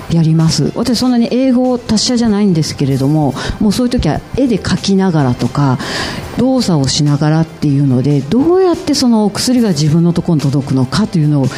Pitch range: 145-230 Hz